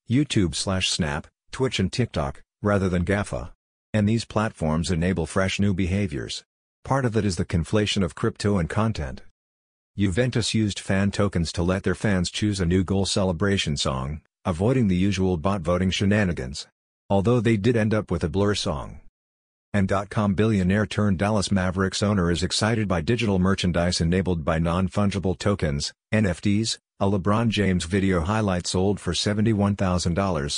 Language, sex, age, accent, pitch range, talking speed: English, male, 50-69, American, 90-105 Hz, 155 wpm